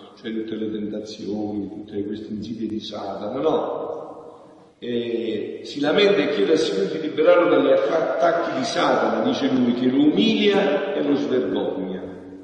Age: 50-69